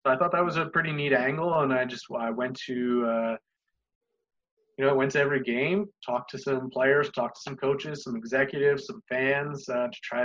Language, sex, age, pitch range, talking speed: English, male, 20-39, 115-140 Hz, 215 wpm